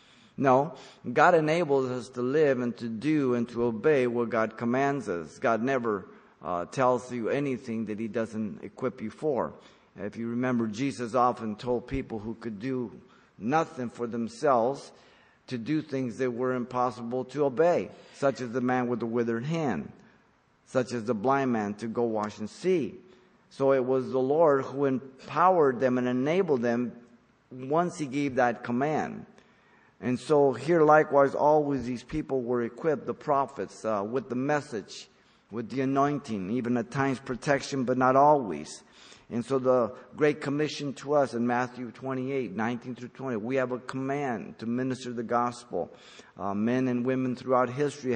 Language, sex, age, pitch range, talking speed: English, male, 50-69, 120-140 Hz, 170 wpm